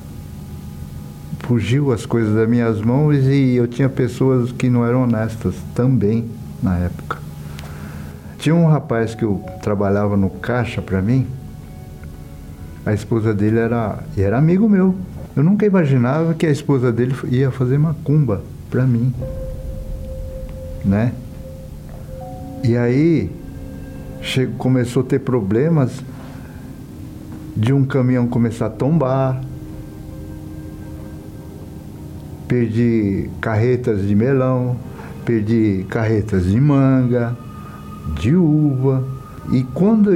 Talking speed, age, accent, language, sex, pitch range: 110 wpm, 60-79, Brazilian, Portuguese, male, 85-130 Hz